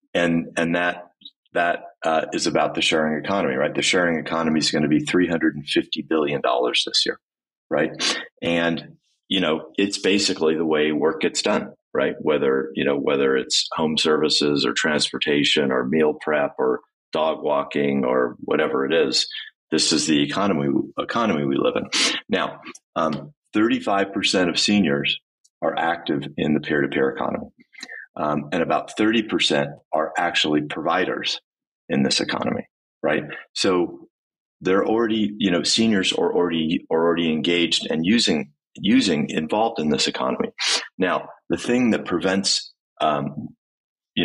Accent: American